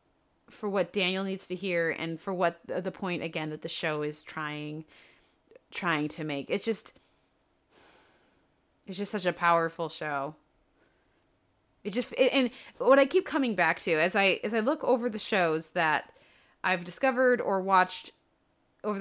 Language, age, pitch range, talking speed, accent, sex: English, 20-39, 170-225 Hz, 160 wpm, American, female